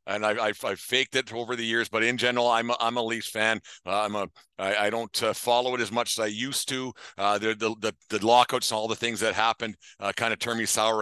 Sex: male